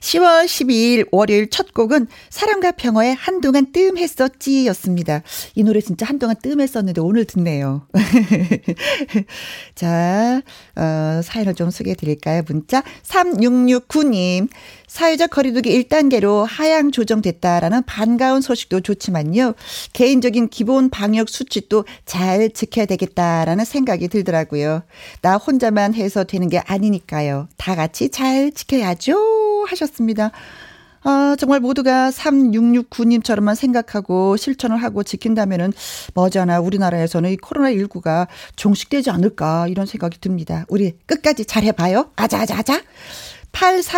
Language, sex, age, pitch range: Korean, female, 40-59, 190-270 Hz